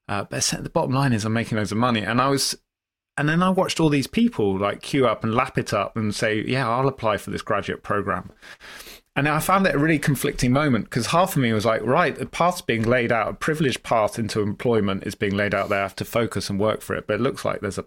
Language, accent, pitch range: English, British, 105-140 Hz